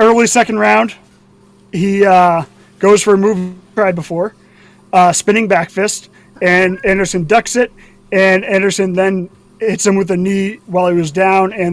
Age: 30-49